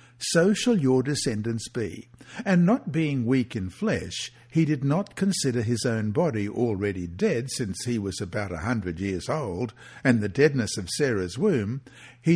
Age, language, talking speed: 60-79, English, 170 wpm